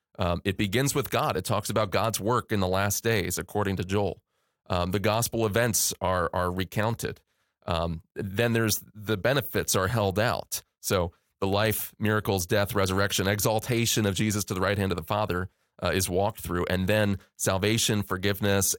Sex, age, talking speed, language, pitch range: male, 30-49, 180 wpm, English, 95-115 Hz